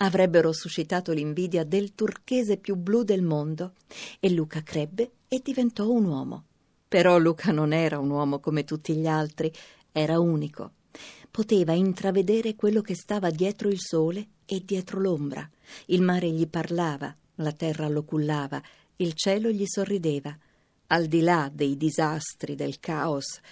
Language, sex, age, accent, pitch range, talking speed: Italian, female, 50-69, native, 155-190 Hz, 150 wpm